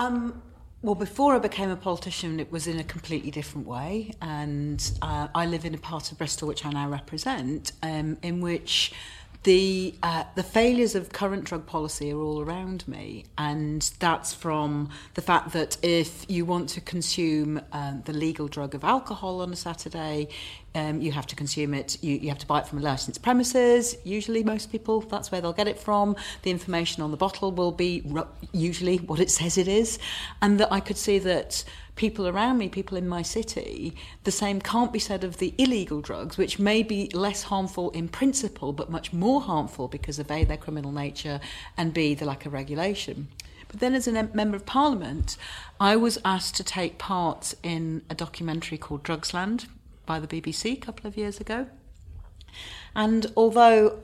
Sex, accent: female, British